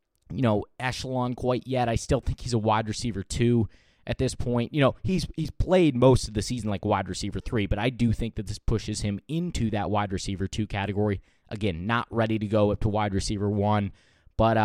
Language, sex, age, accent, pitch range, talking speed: English, male, 20-39, American, 105-130 Hz, 220 wpm